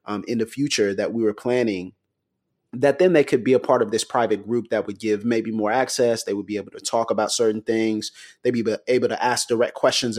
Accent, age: American, 30-49